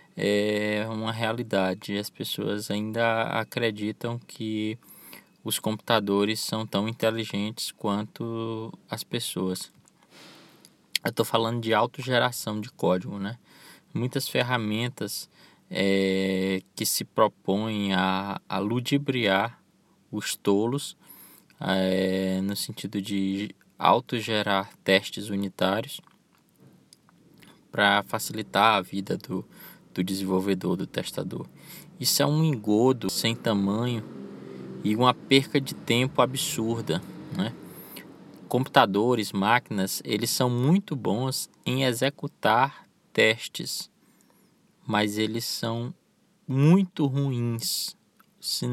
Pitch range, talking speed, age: 100-130 Hz, 95 wpm, 20-39